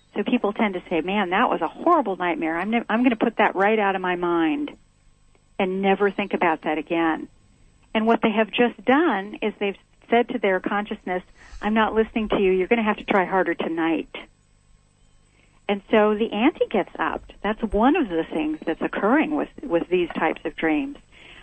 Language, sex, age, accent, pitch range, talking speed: English, female, 50-69, American, 180-230 Hz, 205 wpm